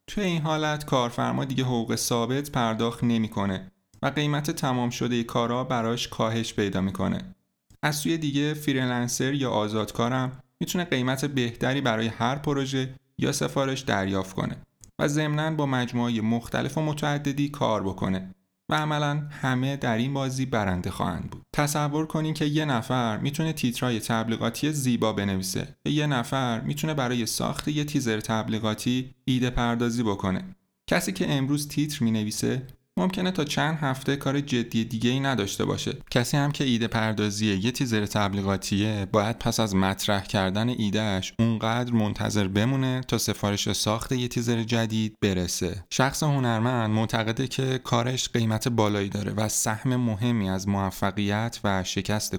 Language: Persian